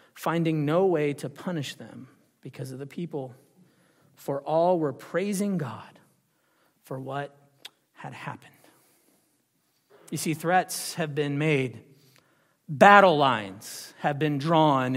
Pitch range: 135-175 Hz